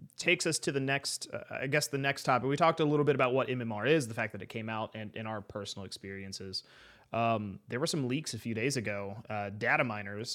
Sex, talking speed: male, 250 wpm